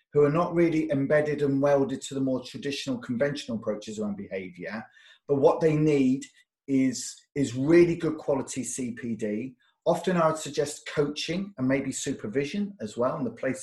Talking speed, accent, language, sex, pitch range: 165 wpm, British, English, male, 130-170 Hz